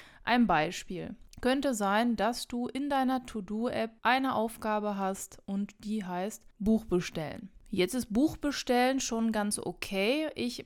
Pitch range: 195-235 Hz